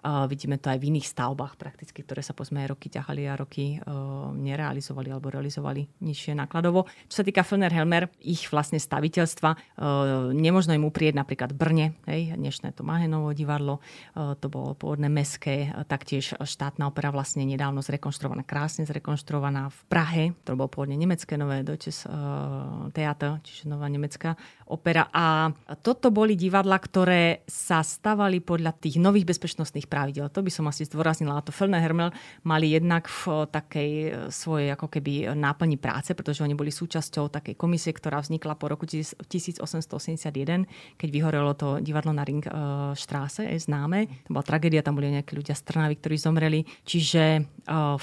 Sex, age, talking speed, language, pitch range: female, 30-49, 160 wpm, Slovak, 145-165 Hz